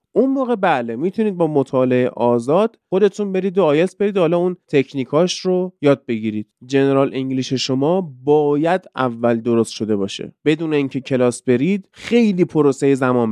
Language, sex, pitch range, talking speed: Persian, male, 125-165 Hz, 145 wpm